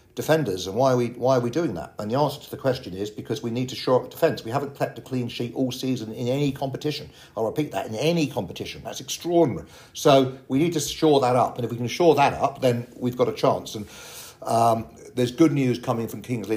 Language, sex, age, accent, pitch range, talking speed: English, male, 50-69, British, 110-140 Hz, 255 wpm